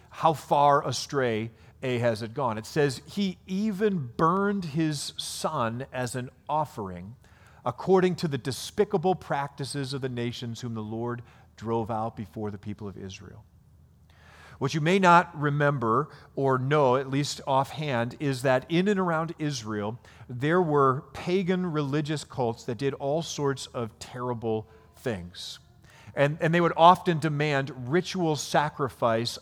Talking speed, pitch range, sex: 145 wpm, 115-150 Hz, male